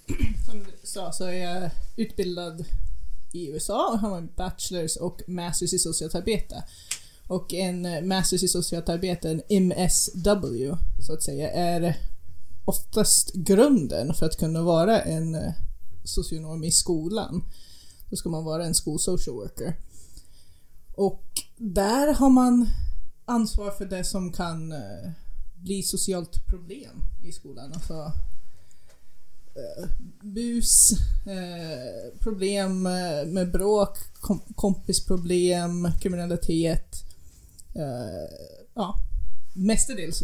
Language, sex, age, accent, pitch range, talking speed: Swedish, female, 20-39, native, 160-190 Hz, 110 wpm